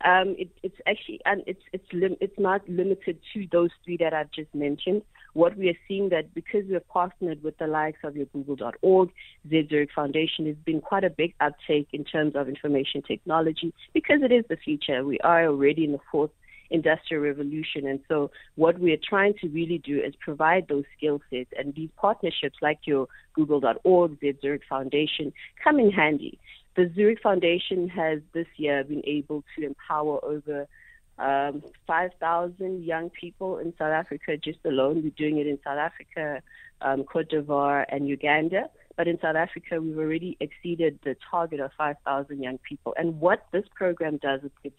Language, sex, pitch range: English, female, 145-175 Hz